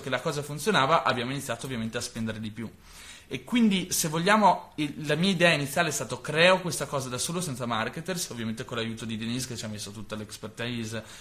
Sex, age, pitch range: male, 20-39, 120-155 Hz